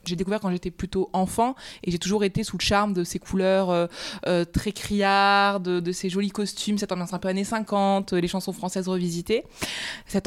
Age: 20-39